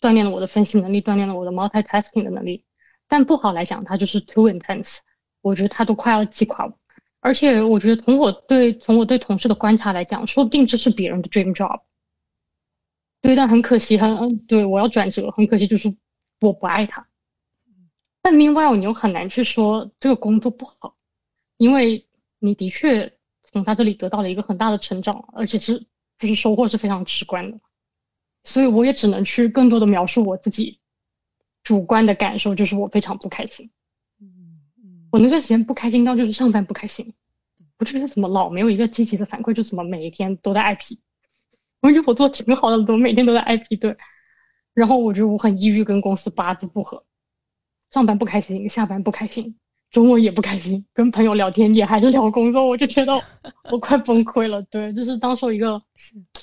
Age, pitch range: 20-39, 200-235 Hz